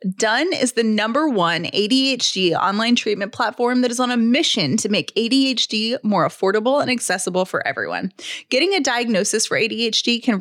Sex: female